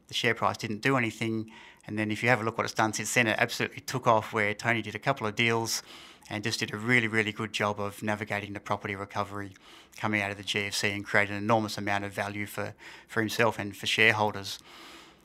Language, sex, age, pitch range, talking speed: English, male, 30-49, 105-120 Hz, 235 wpm